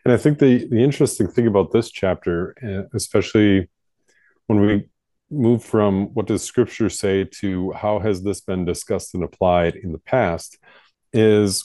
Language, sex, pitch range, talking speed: English, male, 95-110 Hz, 160 wpm